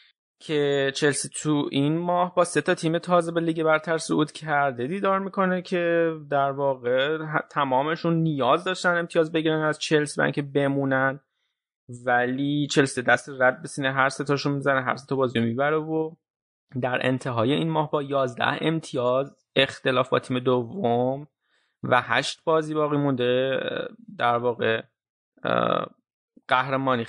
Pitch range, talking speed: 130-160 Hz, 135 wpm